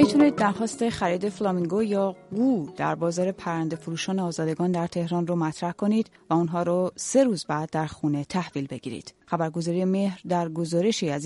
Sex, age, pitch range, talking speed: female, 30-49, 165-205 Hz, 155 wpm